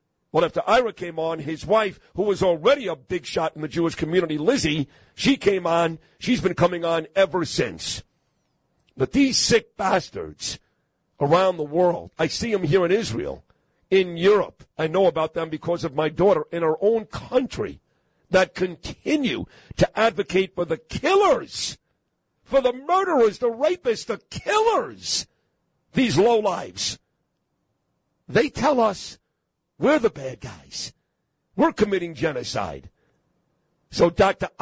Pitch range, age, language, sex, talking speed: 160-215 Hz, 50-69, English, male, 145 wpm